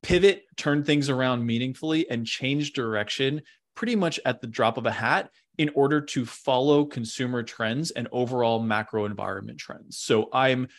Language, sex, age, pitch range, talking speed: English, male, 20-39, 115-140 Hz, 160 wpm